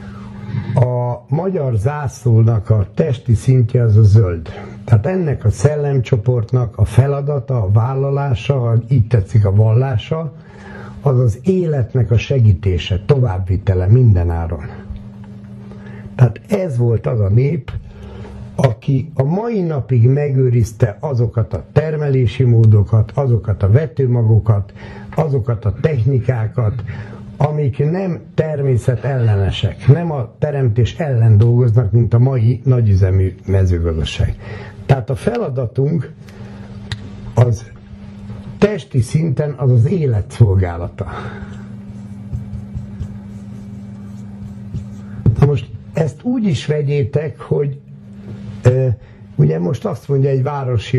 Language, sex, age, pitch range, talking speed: Hungarian, male, 60-79, 105-135 Hz, 100 wpm